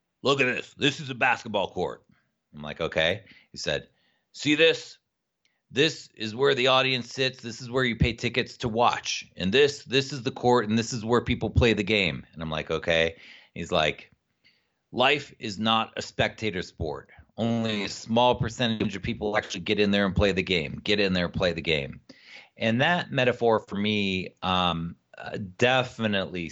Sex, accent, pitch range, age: male, American, 90-115 Hz, 40-59